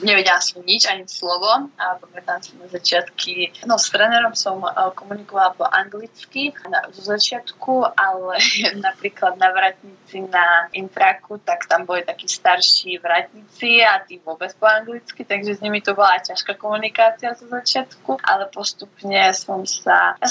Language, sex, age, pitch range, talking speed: Slovak, female, 20-39, 185-225 Hz, 155 wpm